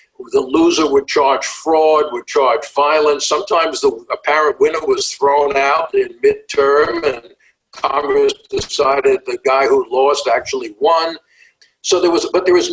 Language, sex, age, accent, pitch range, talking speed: English, male, 60-79, American, 345-425 Hz, 150 wpm